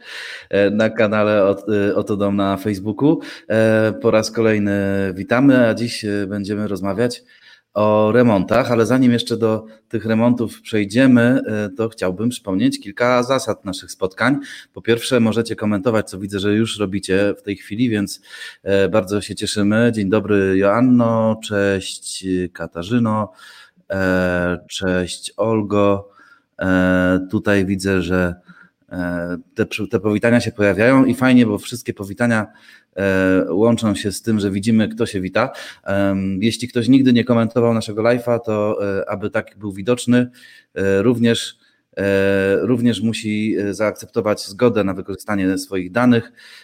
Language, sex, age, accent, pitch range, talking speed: Polish, male, 30-49, native, 100-115 Hz, 120 wpm